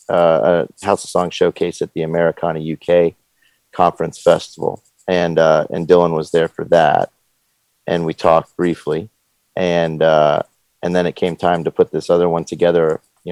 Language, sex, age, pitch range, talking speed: English, male, 30-49, 80-90 Hz, 170 wpm